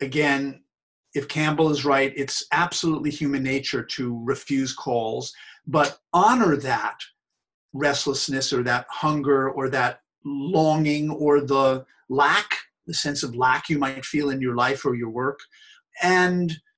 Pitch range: 140-175 Hz